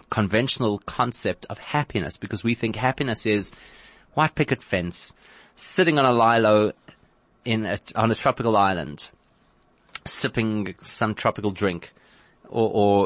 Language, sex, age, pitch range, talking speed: English, male, 30-49, 100-125 Hz, 130 wpm